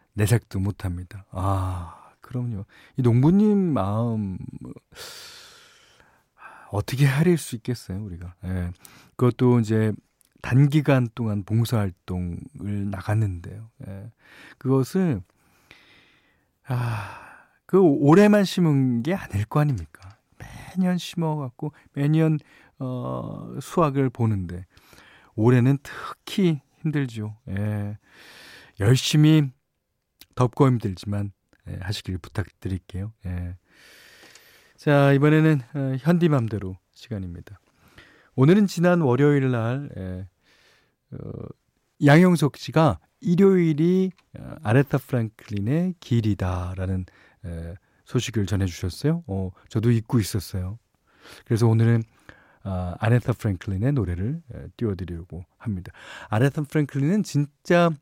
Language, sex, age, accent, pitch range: Korean, male, 40-59, native, 100-145 Hz